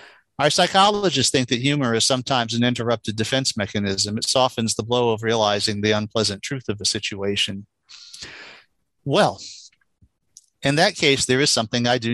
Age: 40-59